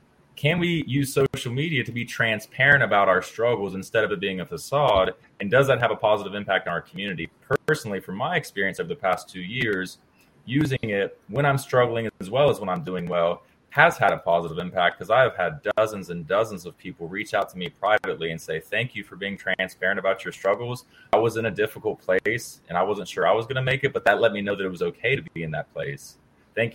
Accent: American